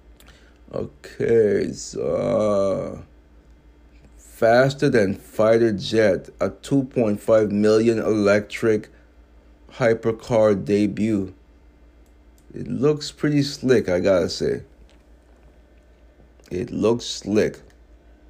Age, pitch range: 30-49, 75-110 Hz